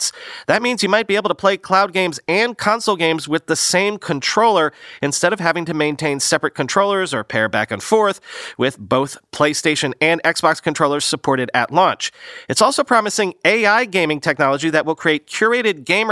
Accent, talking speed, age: American, 180 wpm, 30-49